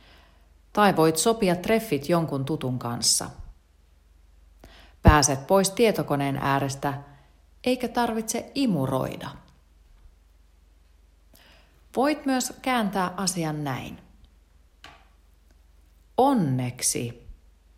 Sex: female